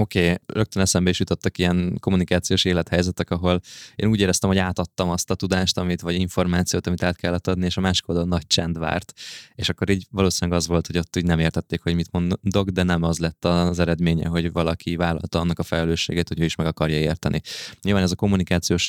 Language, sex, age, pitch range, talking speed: Hungarian, male, 20-39, 85-95 Hz, 215 wpm